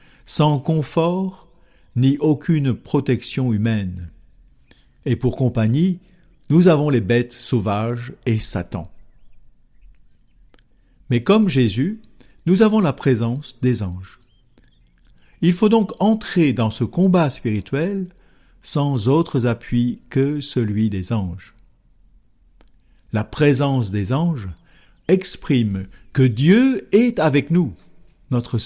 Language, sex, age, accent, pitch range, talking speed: French, male, 60-79, French, 105-150 Hz, 105 wpm